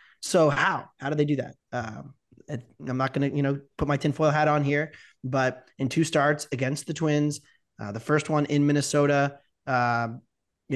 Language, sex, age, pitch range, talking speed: English, male, 30-49, 130-150 Hz, 195 wpm